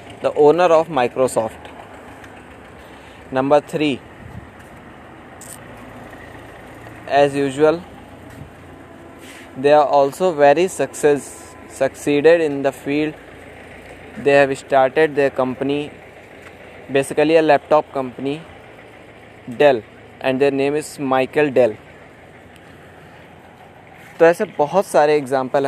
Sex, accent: male, native